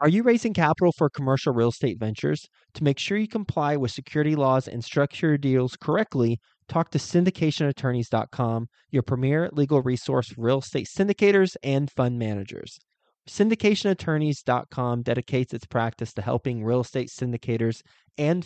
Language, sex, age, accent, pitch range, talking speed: English, male, 20-39, American, 120-155 Hz, 145 wpm